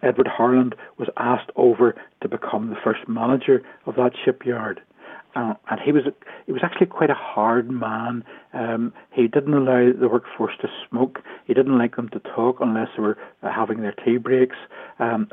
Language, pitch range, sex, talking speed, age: English, 115-130 Hz, male, 185 wpm, 60-79